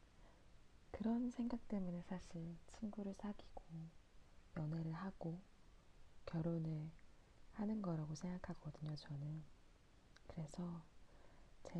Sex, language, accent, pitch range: female, Korean, native, 150-180 Hz